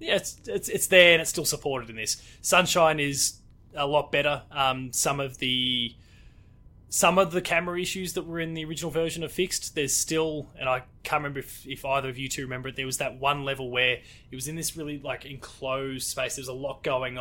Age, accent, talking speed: 20-39, Australian, 230 wpm